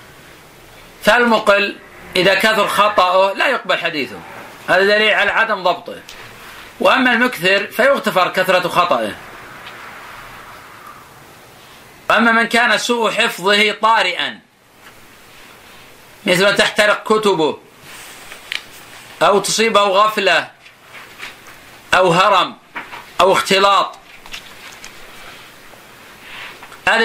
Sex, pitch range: male, 190-215 Hz